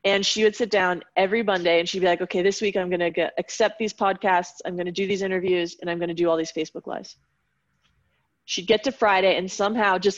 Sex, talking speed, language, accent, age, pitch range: female, 250 wpm, English, American, 30-49, 175-215 Hz